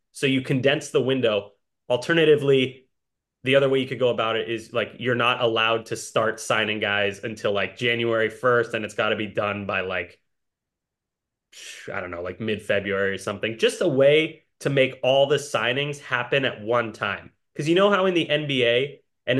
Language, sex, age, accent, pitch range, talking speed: English, male, 20-39, American, 120-155 Hz, 190 wpm